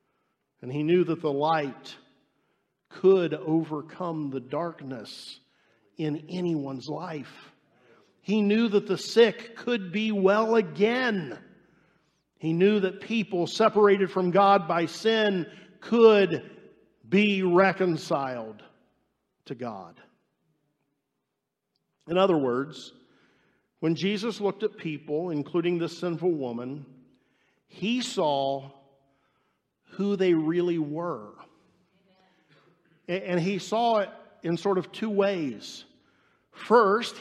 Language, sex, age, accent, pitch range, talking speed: English, male, 50-69, American, 160-210 Hz, 105 wpm